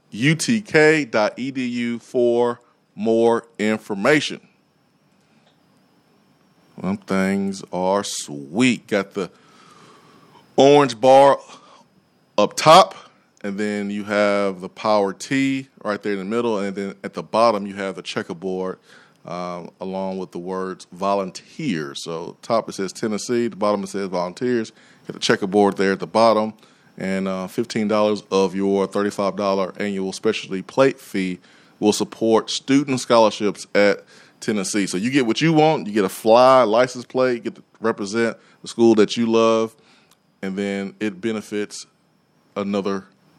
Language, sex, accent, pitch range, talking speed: English, male, American, 95-120 Hz, 140 wpm